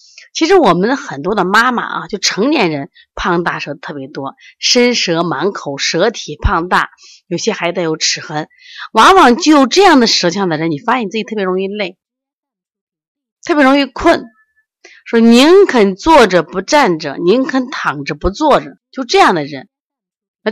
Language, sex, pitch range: Chinese, female, 175-280 Hz